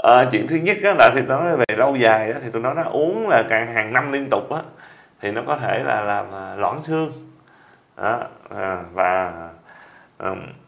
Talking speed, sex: 215 wpm, male